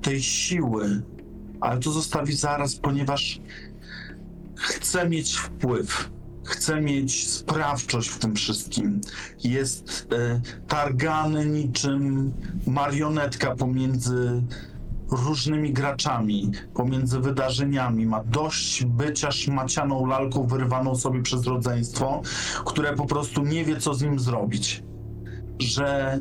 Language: Polish